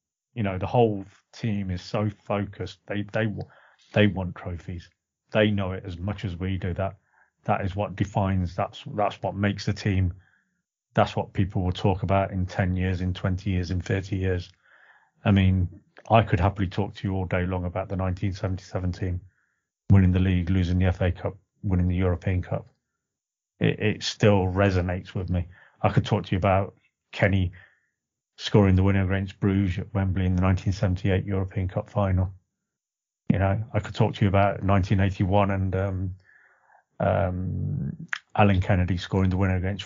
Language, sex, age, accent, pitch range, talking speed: English, male, 30-49, British, 95-105 Hz, 175 wpm